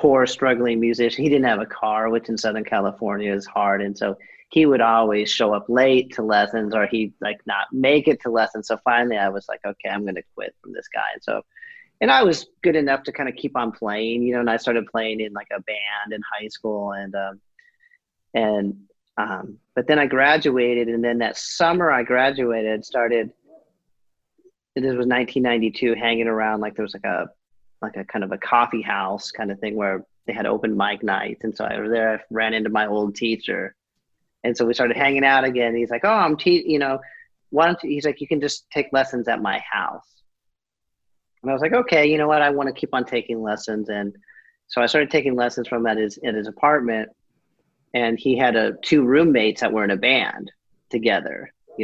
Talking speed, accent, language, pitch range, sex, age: 220 wpm, American, English, 110-140 Hz, male, 40-59